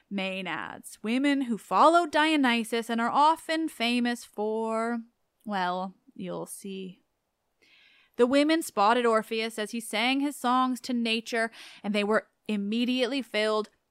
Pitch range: 200-265 Hz